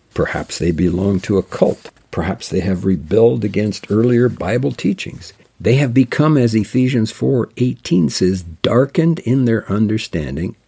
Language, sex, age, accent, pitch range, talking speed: English, male, 60-79, American, 85-115 Hz, 145 wpm